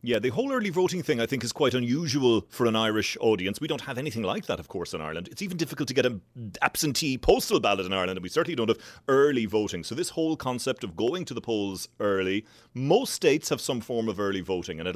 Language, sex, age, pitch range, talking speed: English, male, 30-49, 105-135 Hz, 255 wpm